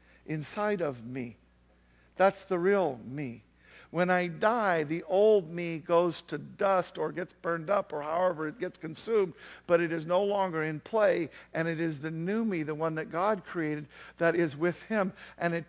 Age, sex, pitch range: 50-69, male, 135-185 Hz